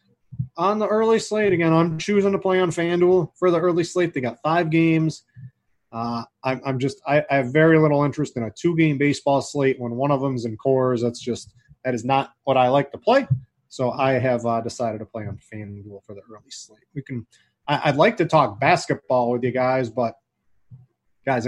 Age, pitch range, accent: 20-39, 125-170 Hz, American